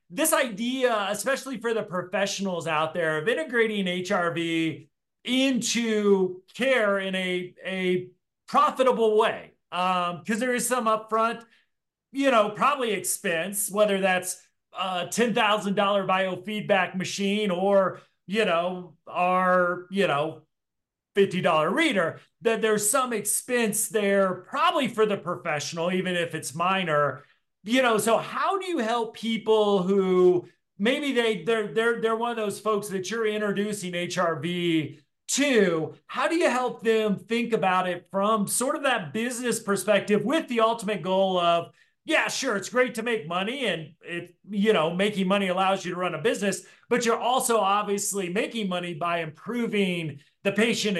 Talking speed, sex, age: 150 wpm, male, 40-59